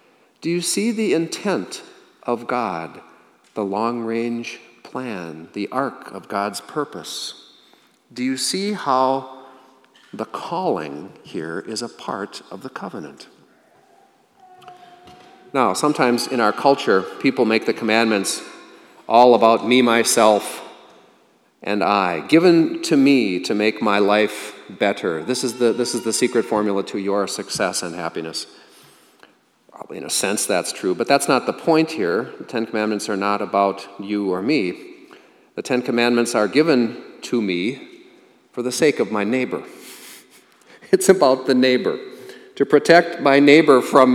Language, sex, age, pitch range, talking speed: English, male, 40-59, 105-140 Hz, 145 wpm